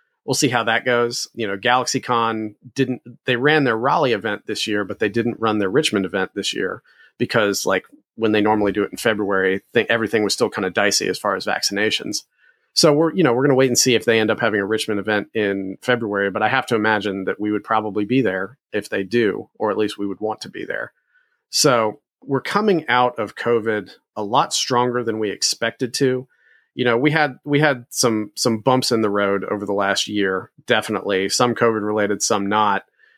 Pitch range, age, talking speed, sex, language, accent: 105-125 Hz, 40-59, 220 wpm, male, English, American